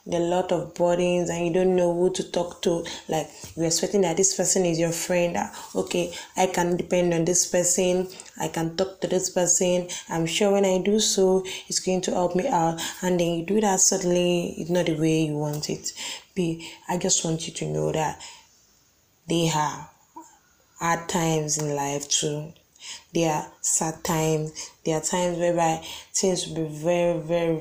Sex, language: female, English